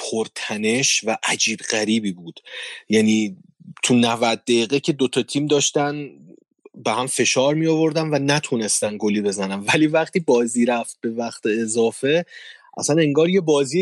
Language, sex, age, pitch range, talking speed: Persian, male, 30-49, 120-160 Hz, 150 wpm